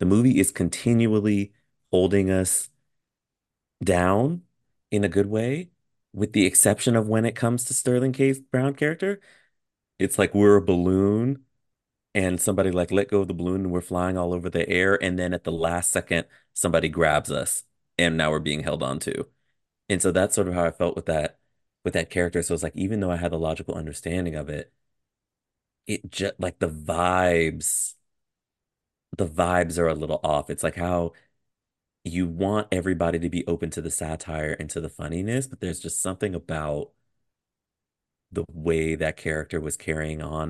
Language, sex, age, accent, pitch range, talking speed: English, male, 30-49, American, 85-105 Hz, 180 wpm